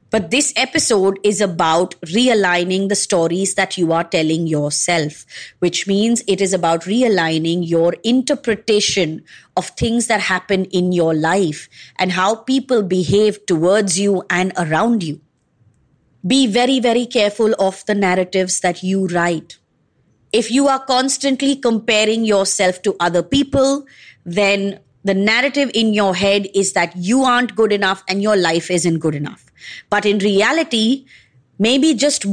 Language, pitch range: English, 185-240 Hz